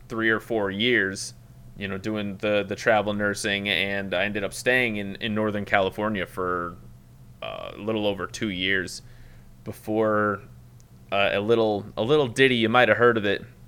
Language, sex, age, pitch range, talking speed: English, male, 30-49, 100-120 Hz, 175 wpm